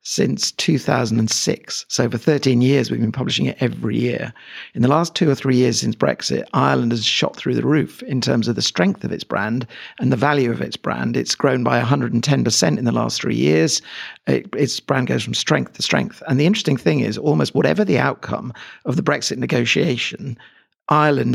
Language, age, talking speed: English, 50-69, 200 wpm